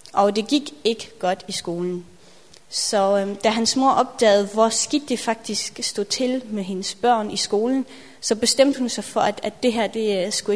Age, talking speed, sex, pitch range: 30-49, 195 wpm, female, 205-235 Hz